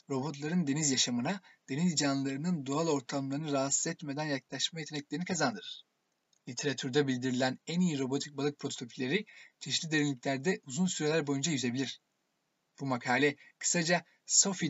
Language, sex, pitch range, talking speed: Turkish, male, 135-155 Hz, 120 wpm